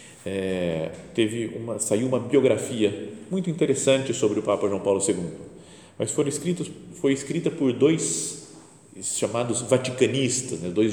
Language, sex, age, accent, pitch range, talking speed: Portuguese, male, 40-59, Brazilian, 100-145 Hz, 135 wpm